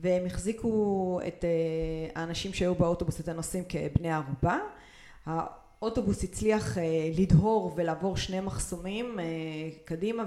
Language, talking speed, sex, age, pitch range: Hebrew, 100 wpm, female, 30-49, 165-220 Hz